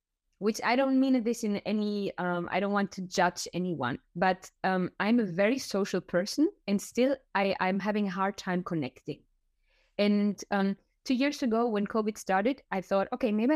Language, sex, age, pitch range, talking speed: English, female, 20-39, 190-245 Hz, 180 wpm